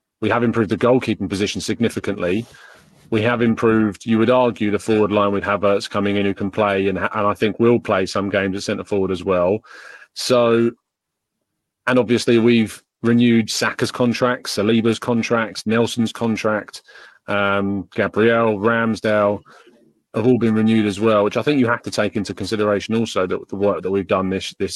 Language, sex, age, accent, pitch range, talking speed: English, male, 30-49, British, 100-120 Hz, 175 wpm